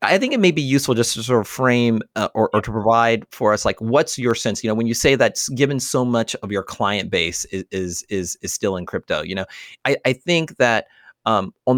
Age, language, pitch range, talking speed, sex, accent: 30-49, English, 95-125 Hz, 255 wpm, male, American